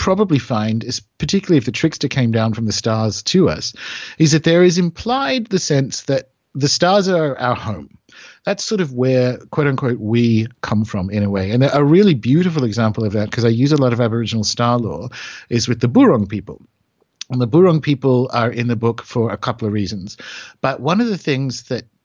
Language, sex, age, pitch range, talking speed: English, male, 50-69, 115-150 Hz, 215 wpm